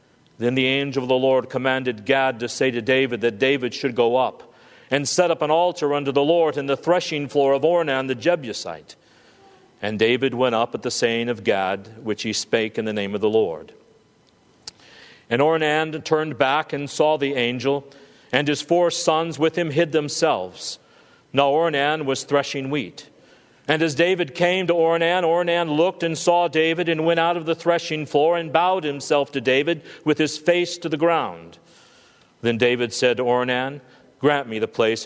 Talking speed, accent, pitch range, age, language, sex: 190 wpm, American, 125-170 Hz, 50-69, English, male